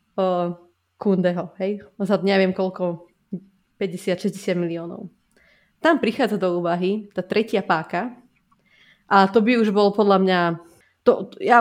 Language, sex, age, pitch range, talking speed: Slovak, female, 20-39, 180-215 Hz, 115 wpm